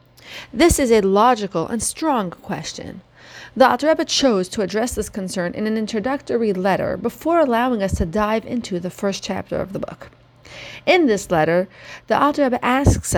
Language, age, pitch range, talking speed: English, 40-59, 195-265 Hz, 165 wpm